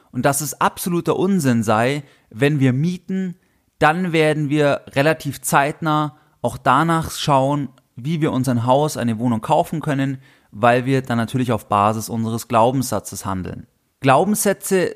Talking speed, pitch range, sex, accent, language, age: 140 wpm, 130-165 Hz, male, German, German, 30-49